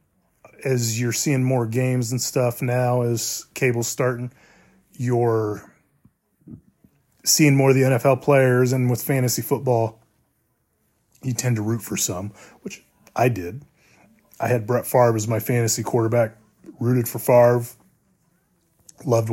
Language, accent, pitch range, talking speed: English, American, 115-135 Hz, 135 wpm